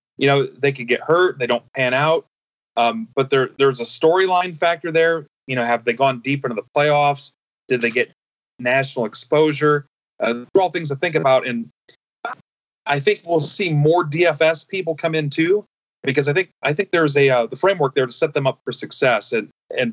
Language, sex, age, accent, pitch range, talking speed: English, male, 30-49, American, 120-150 Hz, 210 wpm